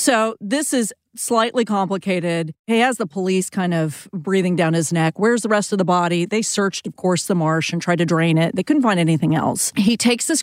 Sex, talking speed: female, 230 wpm